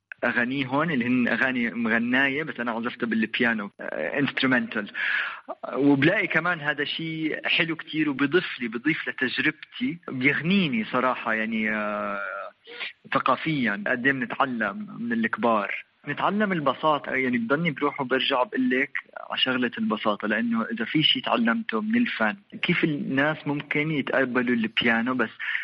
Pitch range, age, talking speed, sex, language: 115-170 Hz, 30-49, 130 wpm, male, Arabic